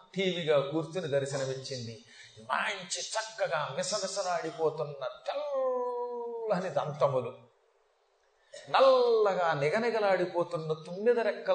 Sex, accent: male, native